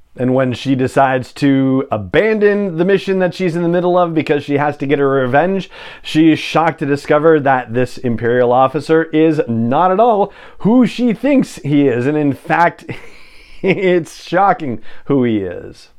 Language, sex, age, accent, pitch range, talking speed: English, male, 40-59, American, 125-155 Hz, 175 wpm